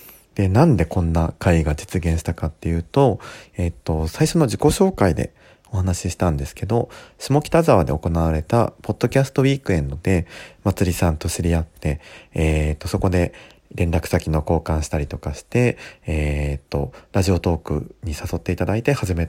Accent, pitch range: native, 80-115 Hz